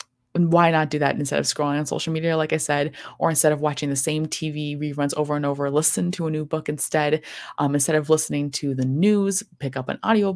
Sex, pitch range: female, 140-185 Hz